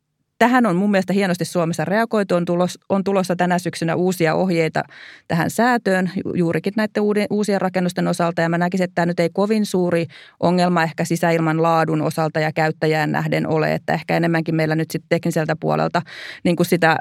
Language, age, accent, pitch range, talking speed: Finnish, 30-49, native, 160-180 Hz, 180 wpm